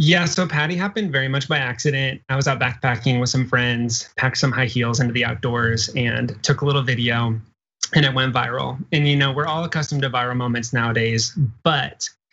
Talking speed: 205 wpm